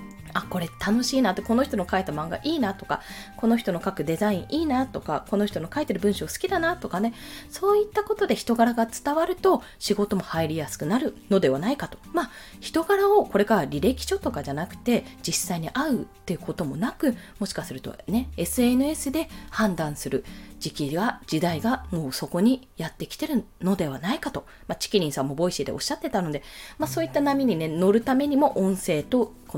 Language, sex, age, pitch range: Japanese, female, 20-39, 175-275 Hz